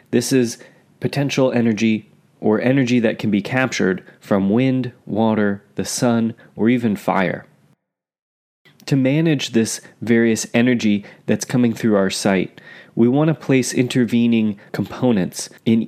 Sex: male